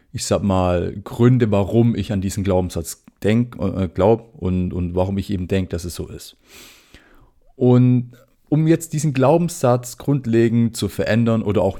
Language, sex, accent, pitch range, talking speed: German, male, German, 100-130 Hz, 160 wpm